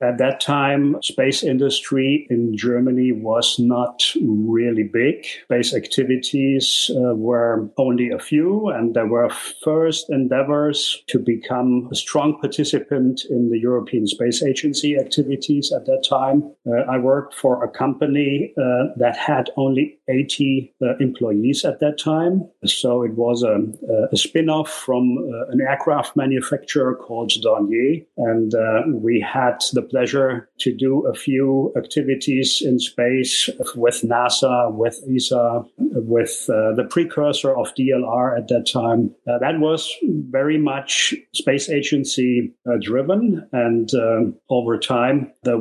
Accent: German